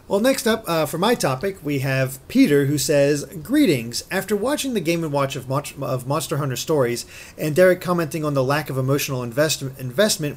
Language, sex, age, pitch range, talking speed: English, male, 40-59, 130-180 Hz, 190 wpm